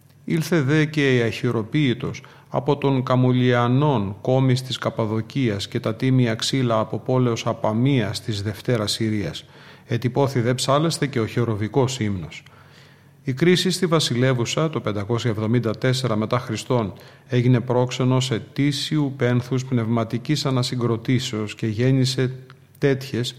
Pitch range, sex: 115-140 Hz, male